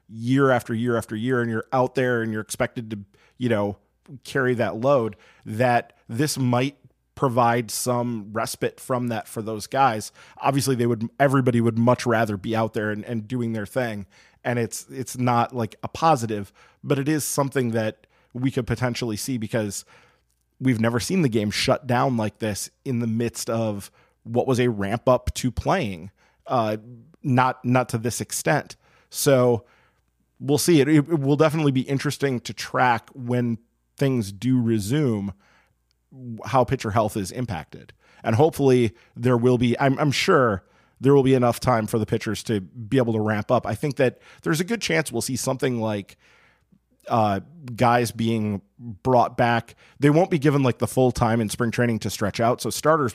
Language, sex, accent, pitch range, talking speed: English, male, American, 110-130 Hz, 180 wpm